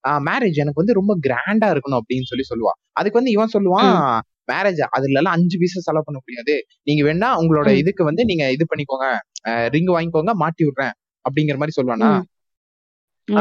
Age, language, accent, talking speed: 20-39, Tamil, native, 165 wpm